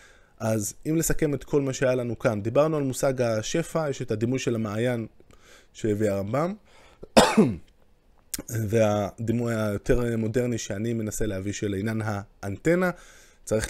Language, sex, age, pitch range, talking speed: Hebrew, male, 20-39, 110-140 Hz, 130 wpm